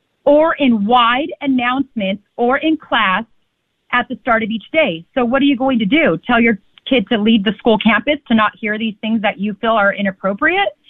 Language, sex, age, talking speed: English, female, 30-49, 210 wpm